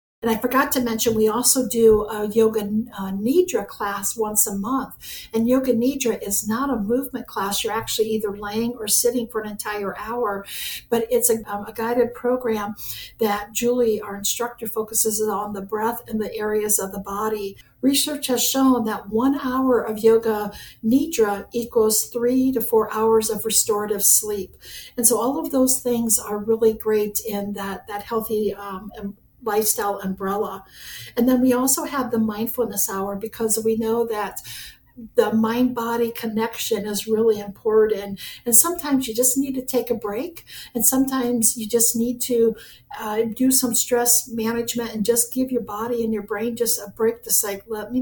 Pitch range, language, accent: 210-240 Hz, English, American